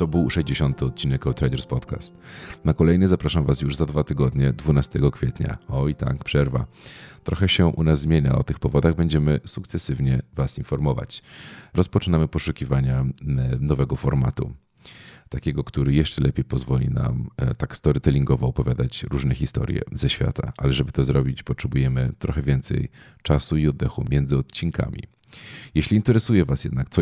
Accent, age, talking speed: native, 40-59, 145 wpm